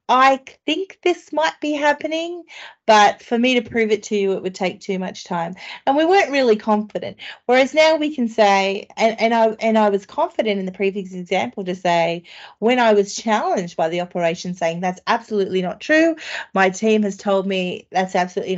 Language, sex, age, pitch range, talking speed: English, female, 30-49, 190-235 Hz, 200 wpm